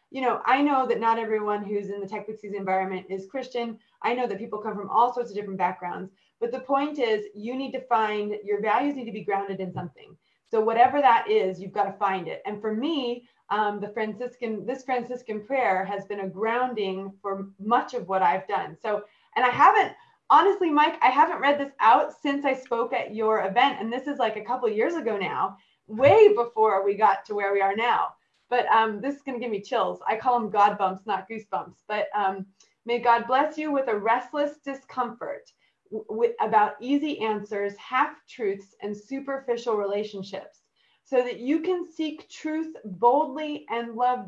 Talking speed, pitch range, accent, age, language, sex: 200 wpm, 205-255 Hz, American, 30-49, English, female